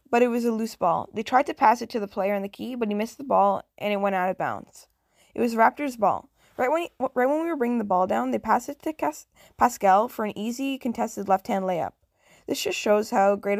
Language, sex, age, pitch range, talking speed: English, female, 10-29, 200-240 Hz, 260 wpm